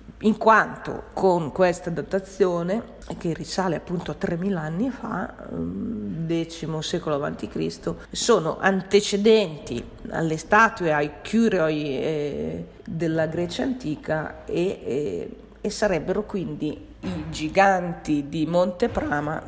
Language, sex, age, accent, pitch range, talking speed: Italian, female, 40-59, native, 160-195 Hz, 110 wpm